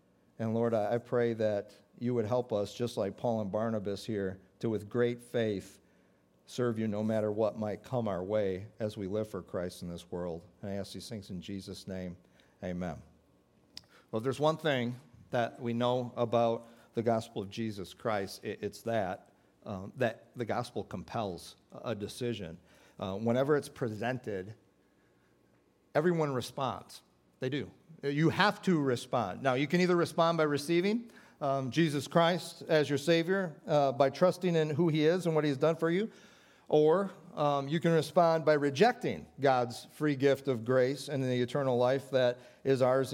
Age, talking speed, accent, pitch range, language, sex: 50-69, 175 wpm, American, 110-155 Hz, English, male